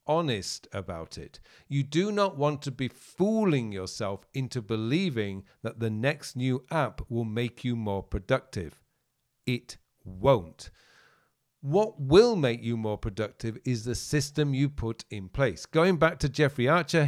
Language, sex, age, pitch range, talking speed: English, male, 50-69, 115-155 Hz, 150 wpm